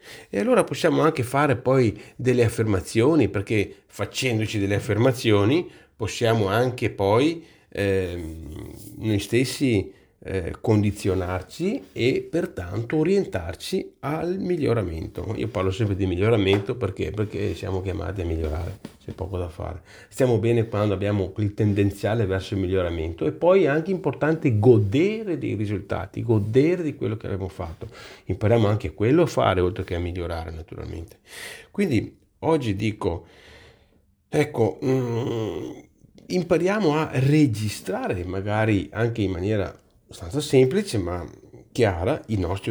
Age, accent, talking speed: 40-59, native, 125 wpm